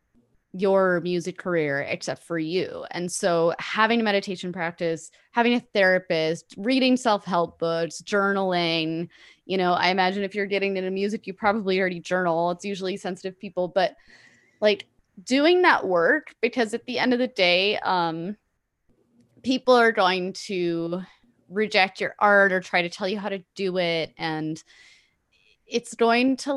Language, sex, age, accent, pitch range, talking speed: English, female, 20-39, American, 170-220 Hz, 155 wpm